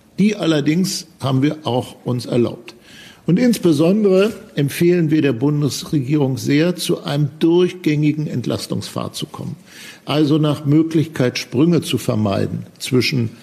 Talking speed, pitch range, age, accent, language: 120 wpm, 125-160 Hz, 50-69, German, German